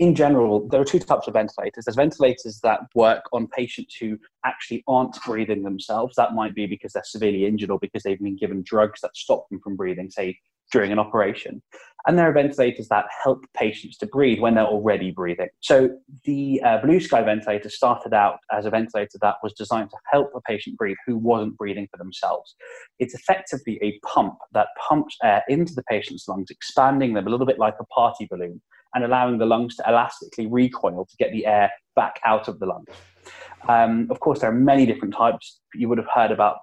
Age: 20-39